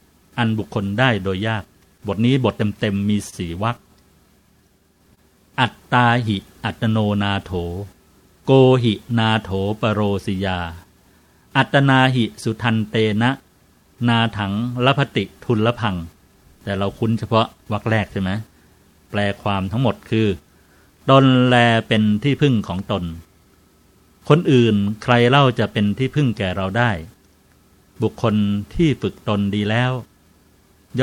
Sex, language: male, Thai